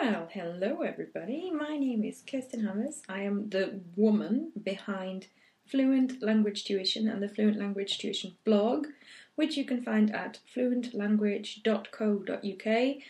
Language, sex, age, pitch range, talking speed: English, female, 20-39, 200-250 Hz, 130 wpm